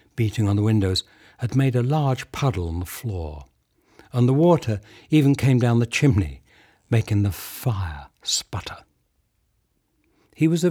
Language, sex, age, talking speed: English, male, 60-79, 150 wpm